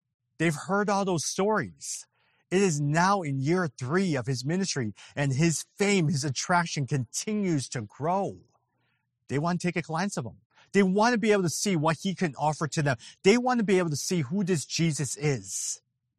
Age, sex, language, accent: 40-59, male, English, American